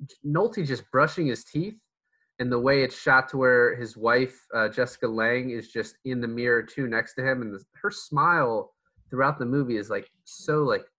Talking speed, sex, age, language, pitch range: 200 wpm, male, 20-39, English, 110-150 Hz